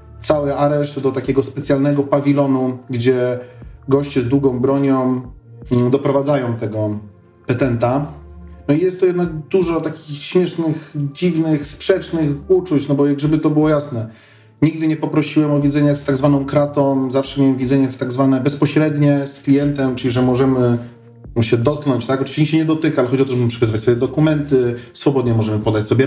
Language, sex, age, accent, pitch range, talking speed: Polish, male, 30-49, native, 125-145 Hz, 160 wpm